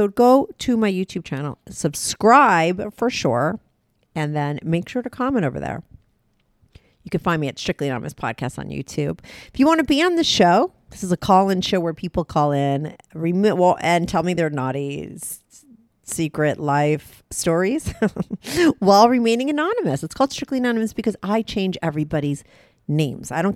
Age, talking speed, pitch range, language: 40-59, 175 wpm, 145-205 Hz, English